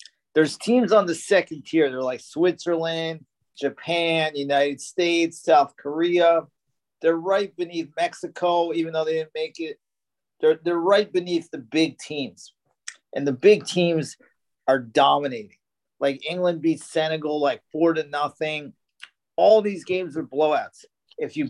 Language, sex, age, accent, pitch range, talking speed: English, male, 40-59, American, 145-175 Hz, 145 wpm